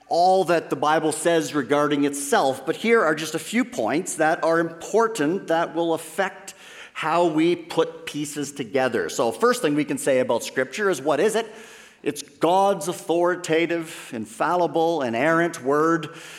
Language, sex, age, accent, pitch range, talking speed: English, male, 50-69, American, 150-195 Hz, 155 wpm